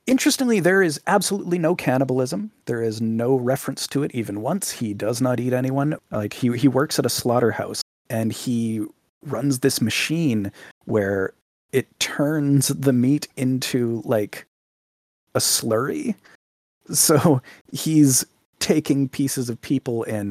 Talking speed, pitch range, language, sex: 140 wpm, 105-145 Hz, English, male